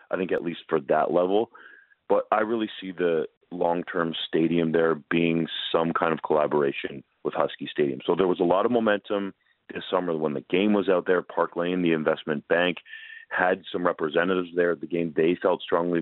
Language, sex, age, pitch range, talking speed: English, male, 30-49, 85-120 Hz, 200 wpm